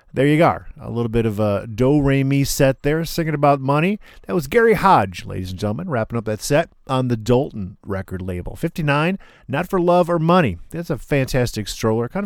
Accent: American